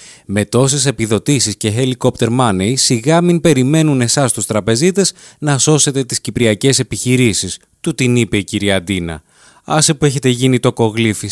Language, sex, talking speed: Greek, male, 155 wpm